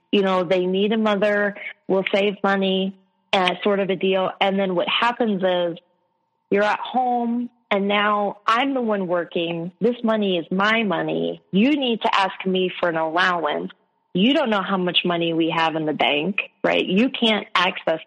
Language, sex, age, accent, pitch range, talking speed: English, female, 30-49, American, 185-225 Hz, 185 wpm